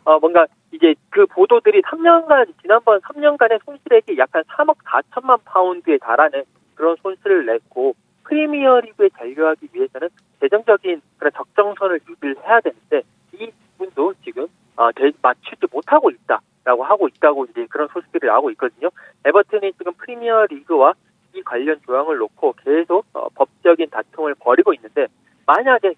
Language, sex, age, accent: Korean, male, 40-59, native